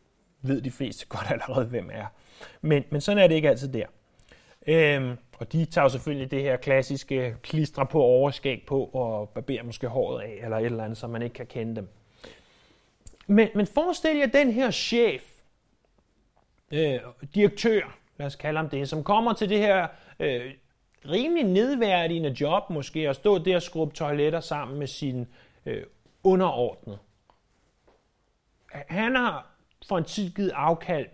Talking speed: 165 wpm